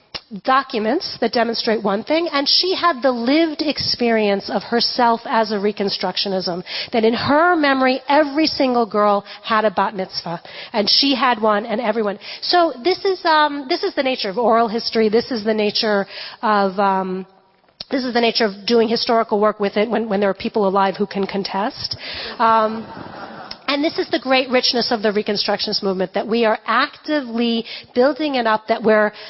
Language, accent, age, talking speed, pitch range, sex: English, American, 40-59, 180 wpm, 210-270 Hz, female